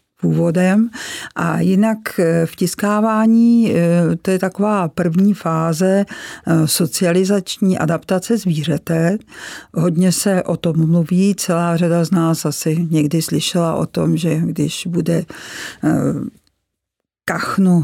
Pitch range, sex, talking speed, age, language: 170-190 Hz, female, 105 wpm, 50-69, Czech